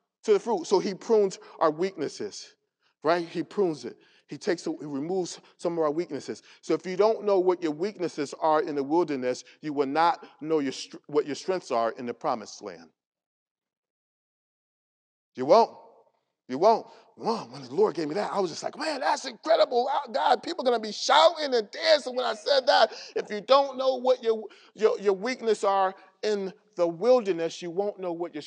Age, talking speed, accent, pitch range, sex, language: 40-59, 200 wpm, American, 160-255 Hz, male, English